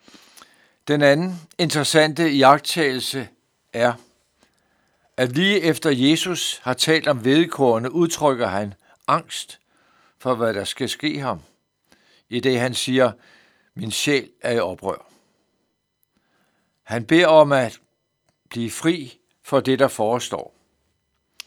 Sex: male